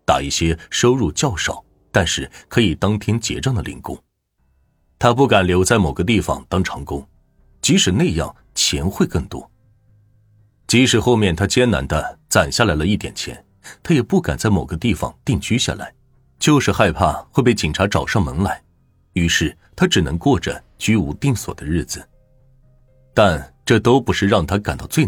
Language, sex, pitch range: Chinese, male, 85-120 Hz